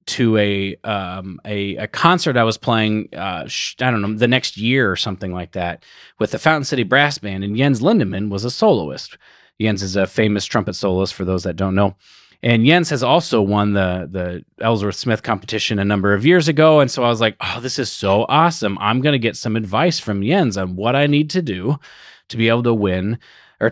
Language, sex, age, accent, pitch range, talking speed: English, male, 30-49, American, 100-140 Hz, 225 wpm